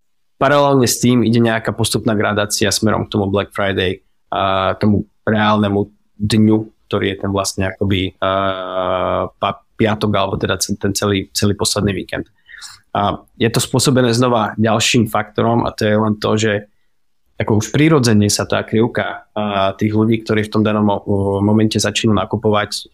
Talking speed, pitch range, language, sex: 160 wpm, 100-110 Hz, Czech, male